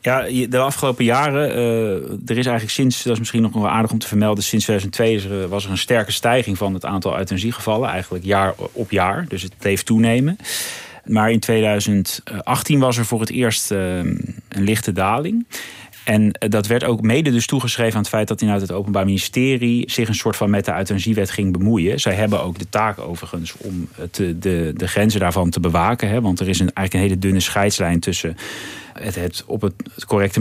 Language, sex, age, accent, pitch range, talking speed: Dutch, male, 30-49, Dutch, 95-115 Hz, 205 wpm